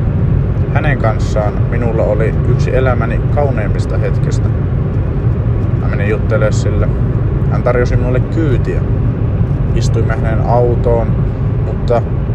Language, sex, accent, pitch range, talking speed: Finnish, male, native, 115-125 Hz, 95 wpm